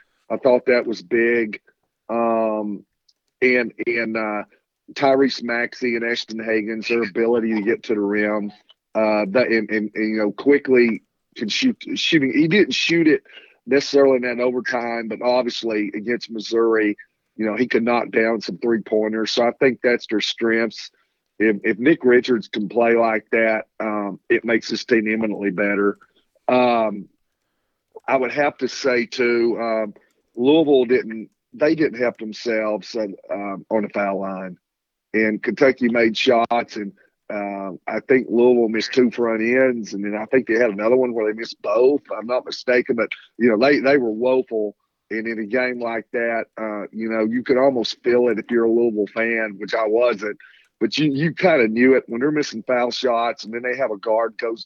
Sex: male